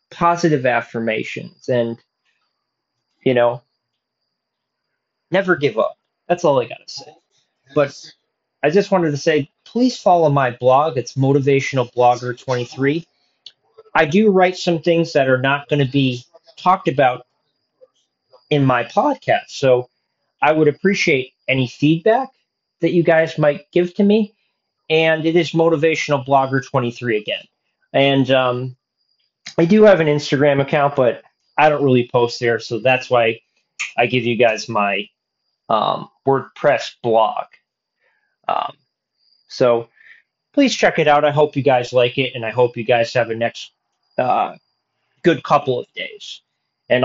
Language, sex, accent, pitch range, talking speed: English, male, American, 125-170 Hz, 145 wpm